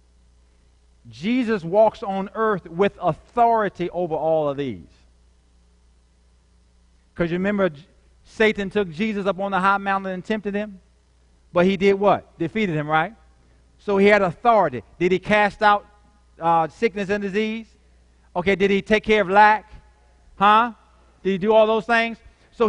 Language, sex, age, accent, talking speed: English, male, 50-69, American, 155 wpm